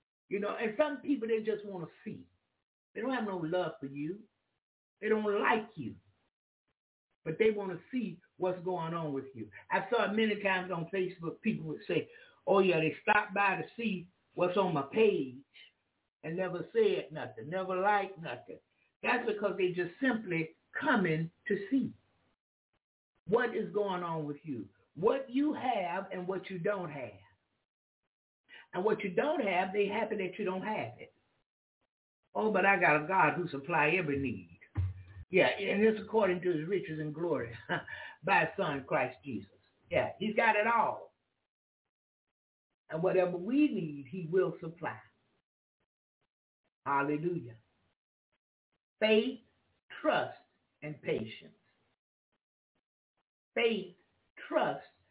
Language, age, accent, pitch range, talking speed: English, 60-79, American, 160-215 Hz, 150 wpm